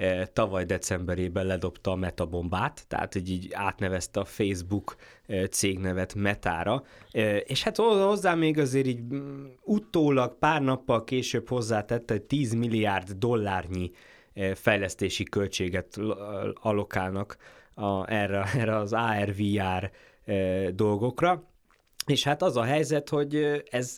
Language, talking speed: Hungarian, 110 wpm